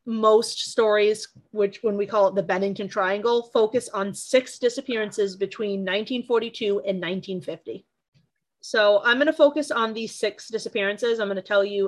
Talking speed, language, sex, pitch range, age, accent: 160 wpm, English, female, 205-265 Hz, 30-49, American